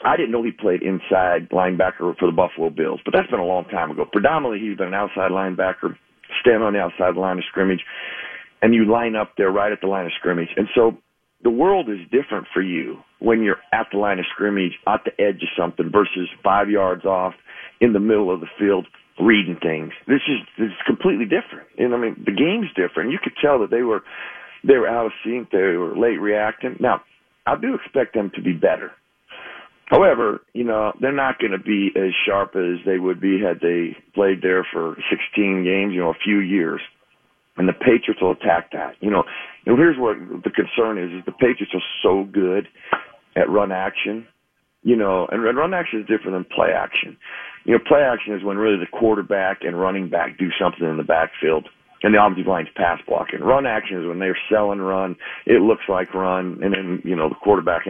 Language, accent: English, American